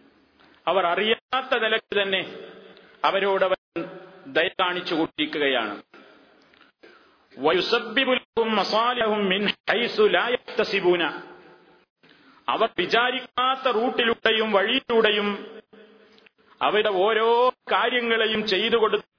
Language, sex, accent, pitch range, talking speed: Malayalam, male, native, 175-230 Hz, 50 wpm